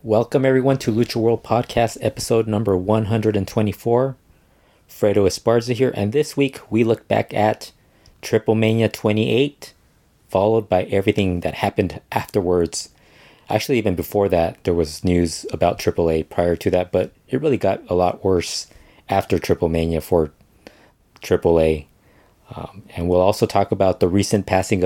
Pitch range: 85-110 Hz